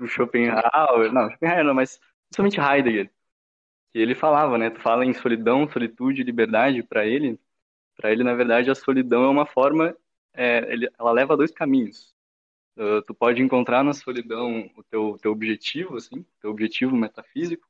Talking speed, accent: 165 wpm, Brazilian